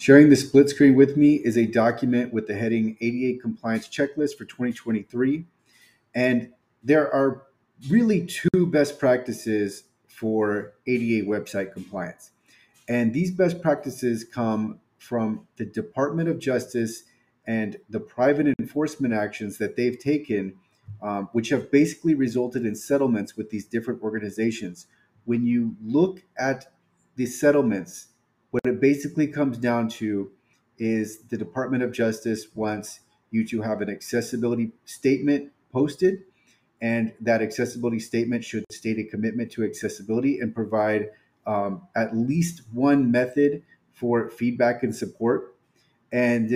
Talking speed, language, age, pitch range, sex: 135 wpm, English, 30-49, 110-135 Hz, male